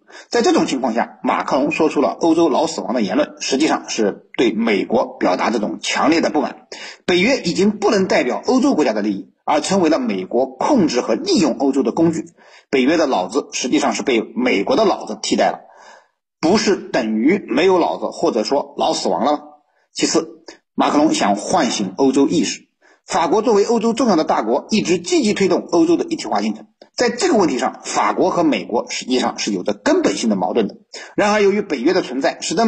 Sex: male